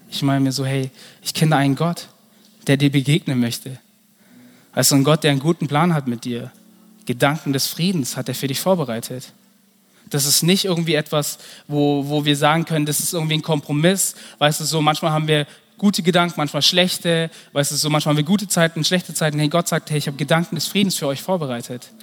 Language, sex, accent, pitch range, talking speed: German, male, German, 135-180 Hz, 215 wpm